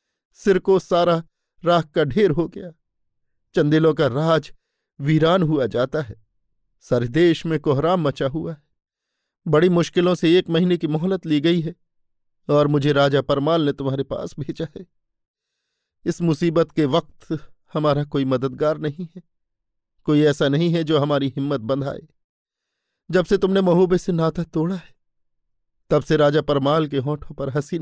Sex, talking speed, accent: male, 155 wpm, native